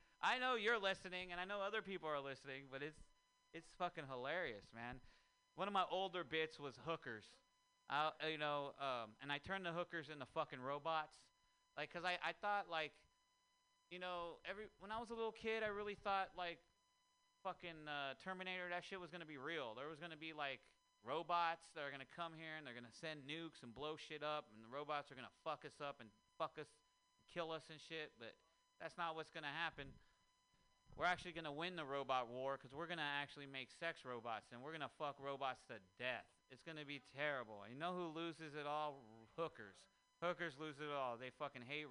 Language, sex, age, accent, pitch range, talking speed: English, male, 30-49, American, 140-185 Hz, 220 wpm